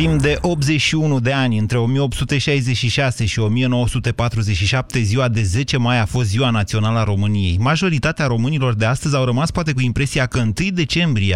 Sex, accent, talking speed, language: male, native, 165 wpm, Romanian